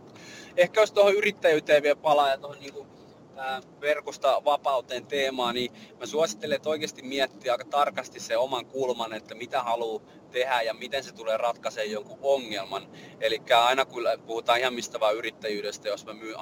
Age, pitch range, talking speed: 30-49, 105-140 Hz, 160 wpm